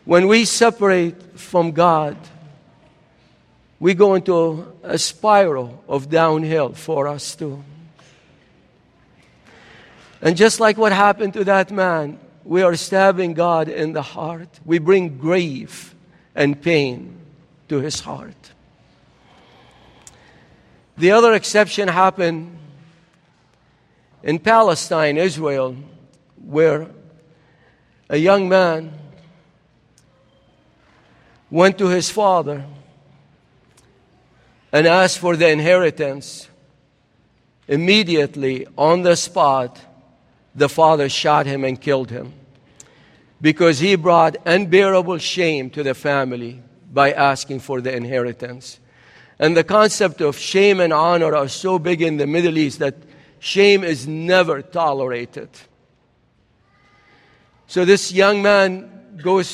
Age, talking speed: 50-69, 105 wpm